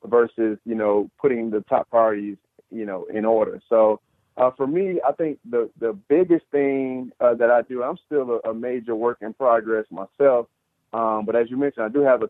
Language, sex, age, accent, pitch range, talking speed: English, male, 30-49, American, 115-135 Hz, 210 wpm